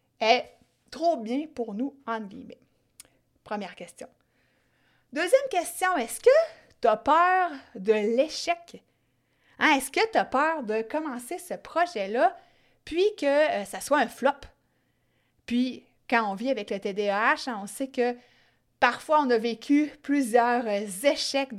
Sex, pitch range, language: female, 210-310 Hz, French